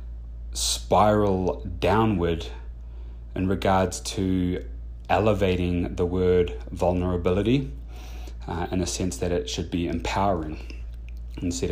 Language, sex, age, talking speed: English, male, 30-49, 95 wpm